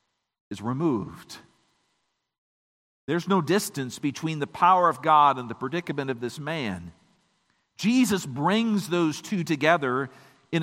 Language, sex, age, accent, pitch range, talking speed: English, male, 50-69, American, 155-220 Hz, 125 wpm